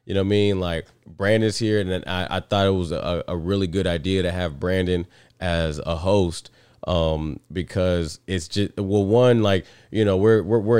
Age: 20-39